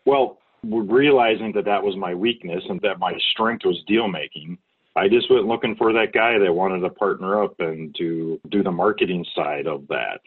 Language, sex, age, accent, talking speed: English, male, 40-59, American, 195 wpm